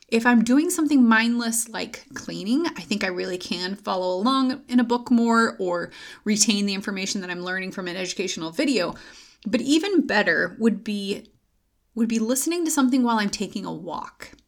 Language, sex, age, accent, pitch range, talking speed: English, female, 30-49, American, 185-240 Hz, 180 wpm